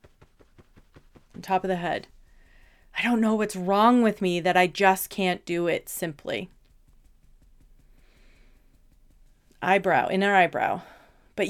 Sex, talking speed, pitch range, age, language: female, 115 wpm, 185-235 Hz, 30-49, English